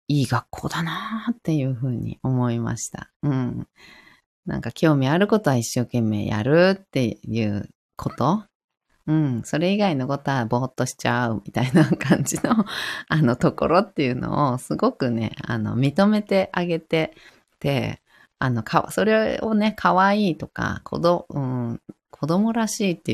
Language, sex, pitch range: Japanese, female, 120-180 Hz